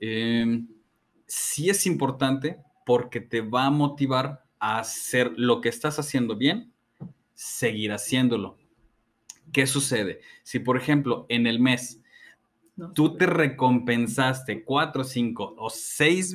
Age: 30-49